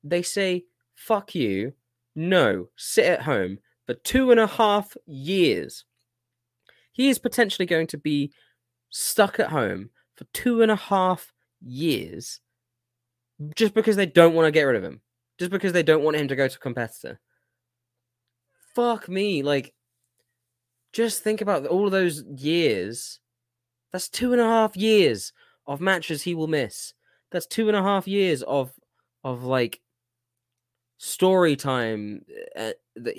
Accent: British